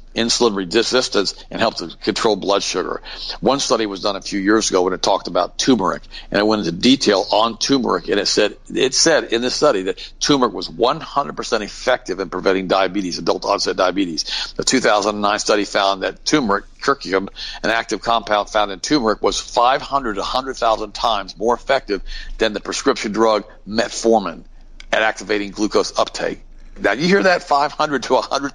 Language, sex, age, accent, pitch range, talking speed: English, male, 50-69, American, 100-120 Hz, 175 wpm